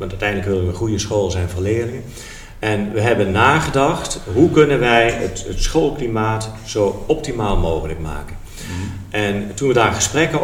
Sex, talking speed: male, 165 wpm